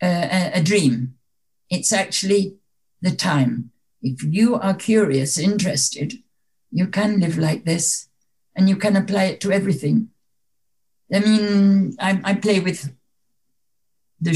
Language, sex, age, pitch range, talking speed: English, female, 60-79, 145-200 Hz, 135 wpm